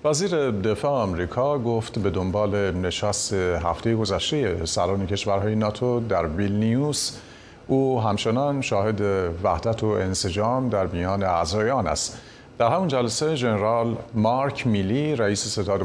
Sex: male